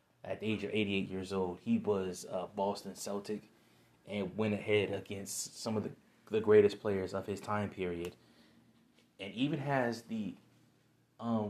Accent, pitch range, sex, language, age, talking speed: American, 100-115 Hz, male, English, 20-39, 160 wpm